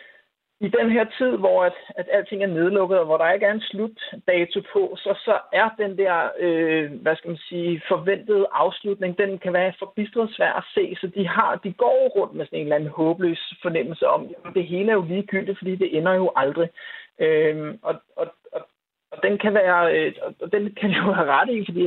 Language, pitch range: Danish, 175-220 Hz